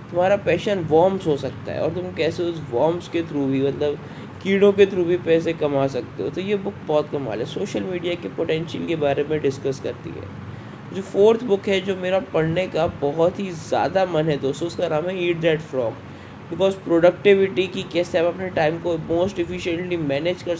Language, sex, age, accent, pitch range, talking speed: Hindi, male, 20-39, native, 155-190 Hz, 205 wpm